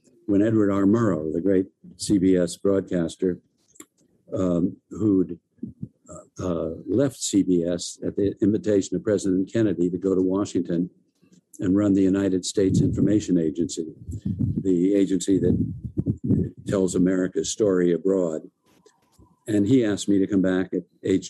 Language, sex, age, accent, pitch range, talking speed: English, male, 60-79, American, 90-100 Hz, 130 wpm